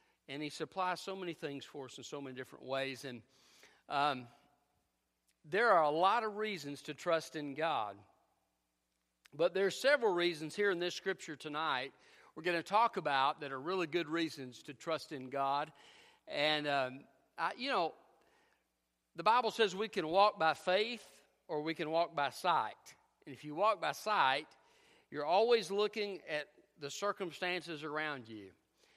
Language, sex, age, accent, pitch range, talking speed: English, male, 50-69, American, 135-185 Hz, 170 wpm